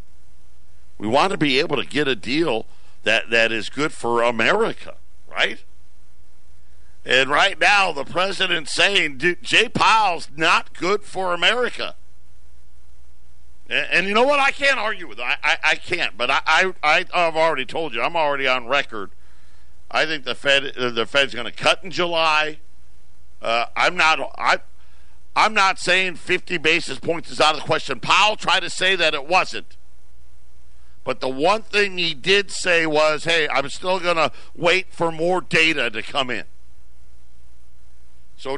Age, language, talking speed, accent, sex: 50-69, English, 170 wpm, American, male